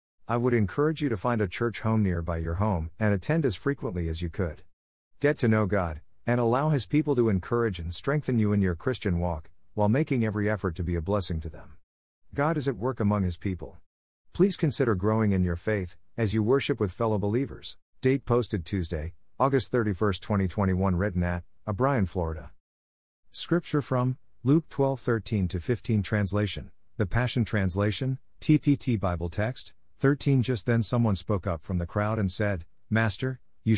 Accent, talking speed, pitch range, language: American, 180 wpm, 90-125 Hz, English